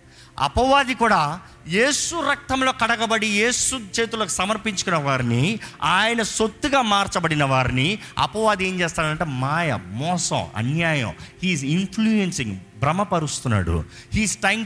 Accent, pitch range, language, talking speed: native, 140-230 Hz, Telugu, 100 wpm